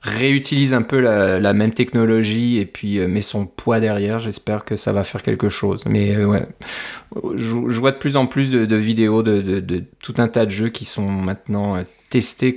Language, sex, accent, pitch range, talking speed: French, male, French, 105-120 Hz, 220 wpm